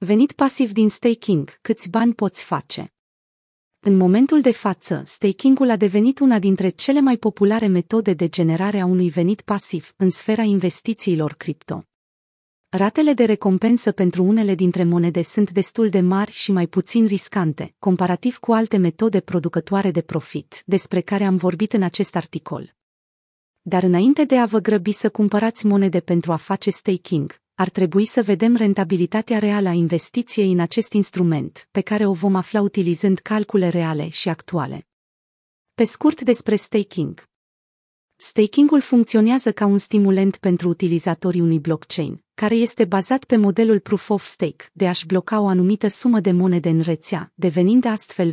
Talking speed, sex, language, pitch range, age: 155 wpm, female, Romanian, 175-220 Hz, 30-49